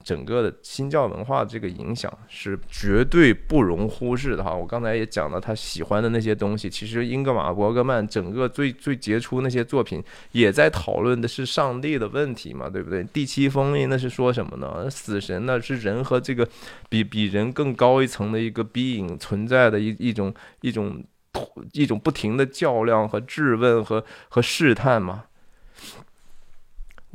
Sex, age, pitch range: male, 20-39, 105-130 Hz